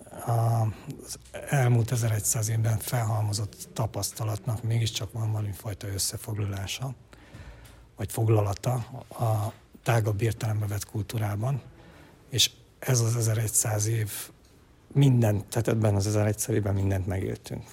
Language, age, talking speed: Hungarian, 60-79, 105 wpm